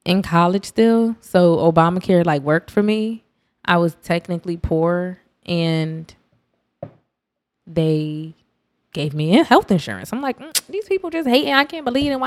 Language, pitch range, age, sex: English, 160-240 Hz, 20-39, female